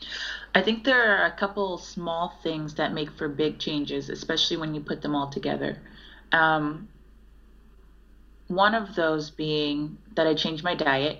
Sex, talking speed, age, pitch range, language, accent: female, 160 wpm, 30-49, 145-165 Hz, English, American